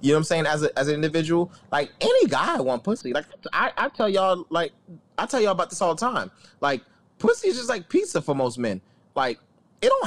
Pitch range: 130-175 Hz